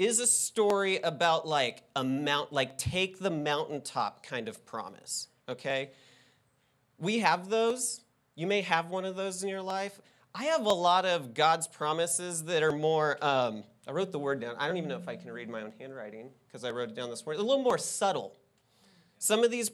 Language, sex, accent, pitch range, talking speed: English, male, American, 130-190 Hz, 205 wpm